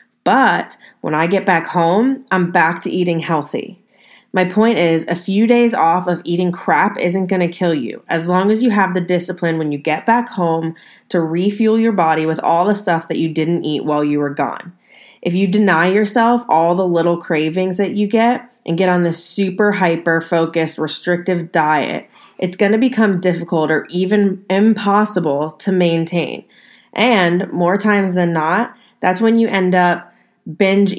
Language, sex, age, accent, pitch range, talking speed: English, female, 20-39, American, 165-200 Hz, 180 wpm